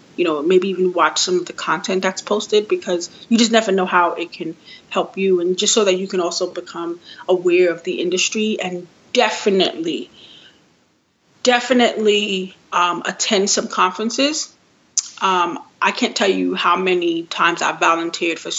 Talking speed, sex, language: 165 wpm, female, English